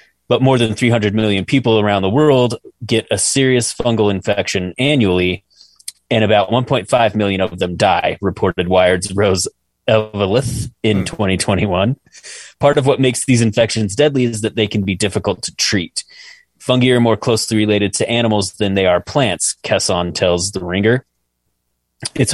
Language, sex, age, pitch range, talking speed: English, male, 30-49, 95-120 Hz, 160 wpm